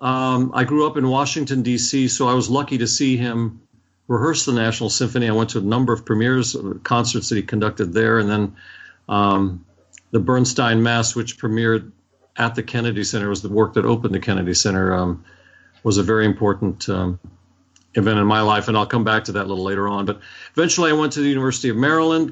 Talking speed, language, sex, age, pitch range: 210 wpm, English, male, 50-69, 105-130 Hz